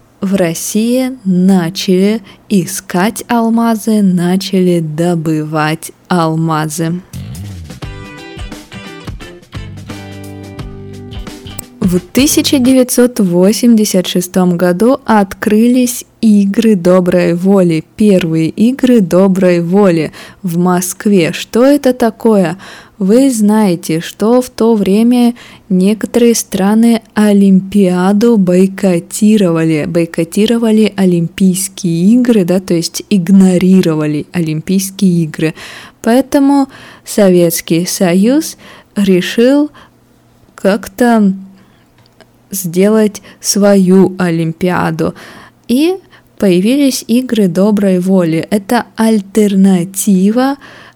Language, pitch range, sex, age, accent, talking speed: Russian, 175-225 Hz, female, 20-39, native, 70 wpm